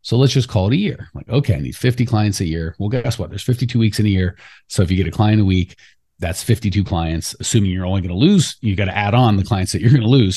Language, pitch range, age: English, 95-120 Hz, 30-49